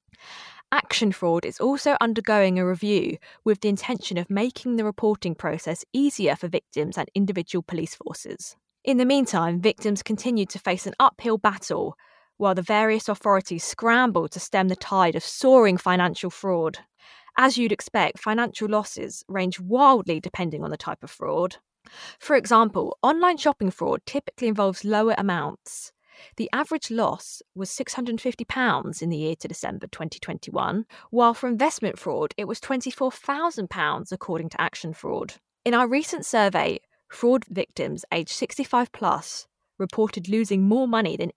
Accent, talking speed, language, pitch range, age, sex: British, 150 wpm, English, 185-250 Hz, 20-39, female